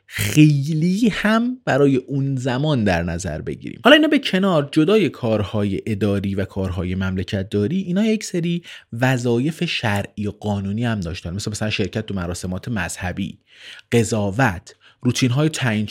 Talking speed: 145 wpm